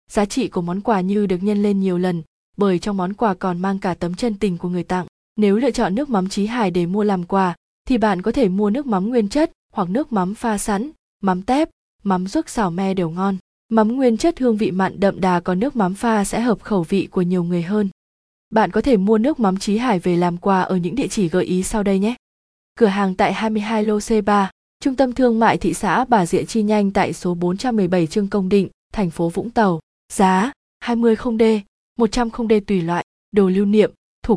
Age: 20-39